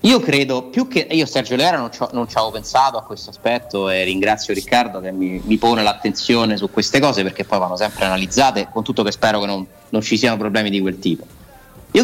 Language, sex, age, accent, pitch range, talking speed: Italian, male, 30-49, native, 100-130 Hz, 220 wpm